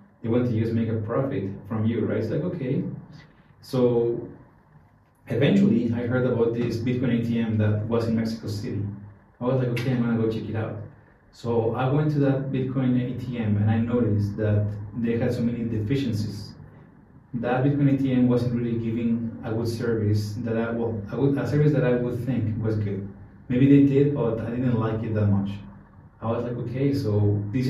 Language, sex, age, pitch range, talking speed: English, male, 30-49, 110-125 Hz, 190 wpm